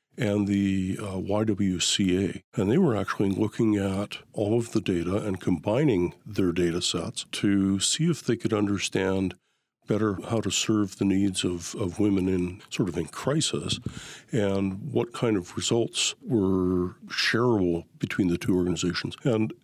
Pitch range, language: 90-115 Hz, English